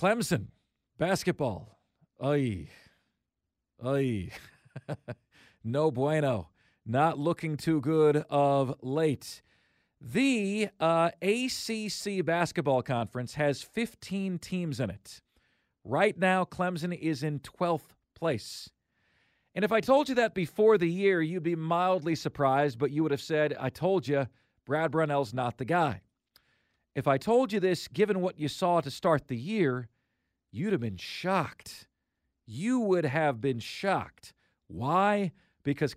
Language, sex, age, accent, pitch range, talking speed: English, male, 40-59, American, 130-185 Hz, 130 wpm